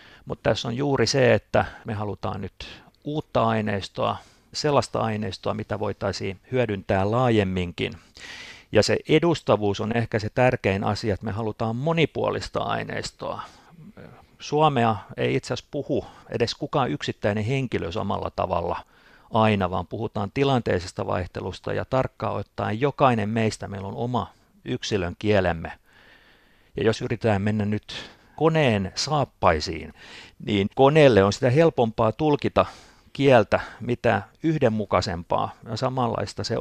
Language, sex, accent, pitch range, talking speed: Finnish, male, native, 100-120 Hz, 125 wpm